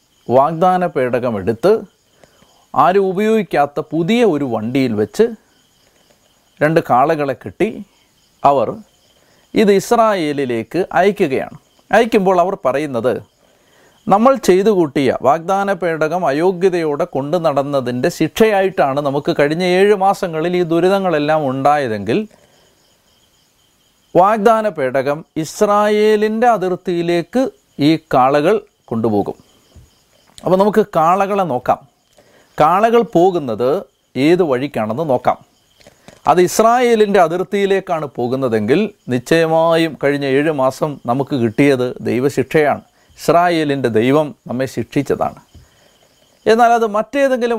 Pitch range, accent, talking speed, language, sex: 140-195 Hz, native, 80 wpm, Malayalam, male